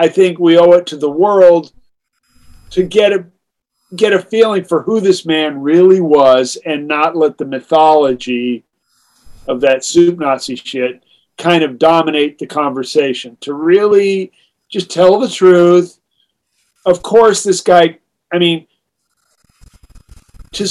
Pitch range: 140-180 Hz